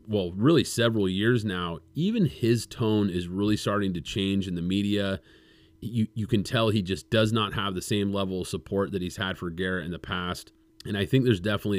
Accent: American